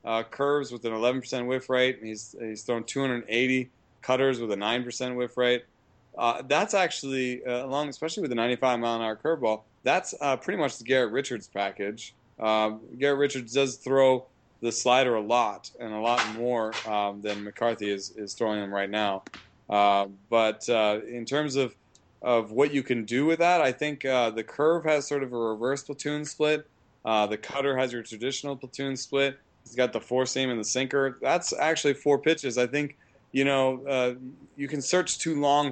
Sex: male